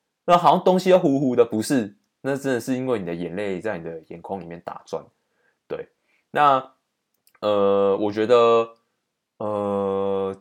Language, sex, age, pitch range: Chinese, male, 20-39, 95-130 Hz